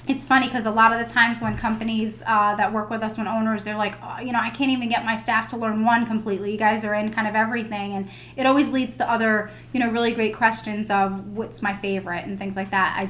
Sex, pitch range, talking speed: female, 200-230 Hz, 265 wpm